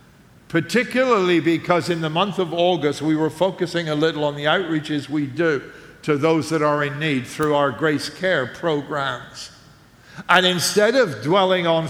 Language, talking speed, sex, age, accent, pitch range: English, 165 wpm, male, 60-79, American, 150-185 Hz